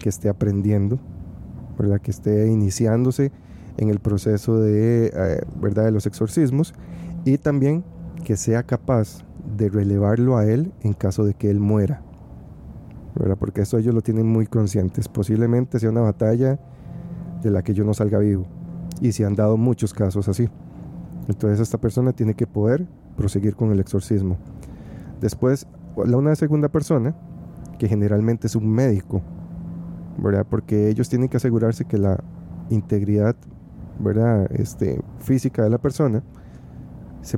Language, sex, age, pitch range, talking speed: Spanish, male, 30-49, 100-120 Hz, 145 wpm